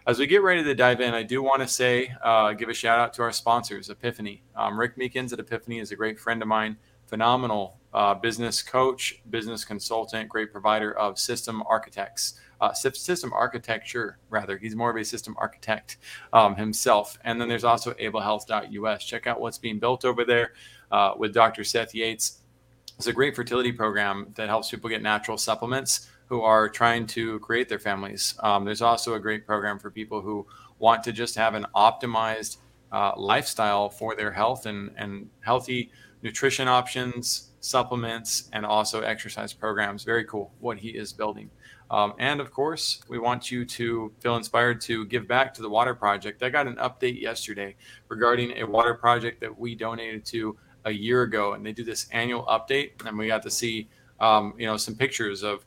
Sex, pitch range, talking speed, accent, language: male, 110-125 Hz, 190 wpm, American, English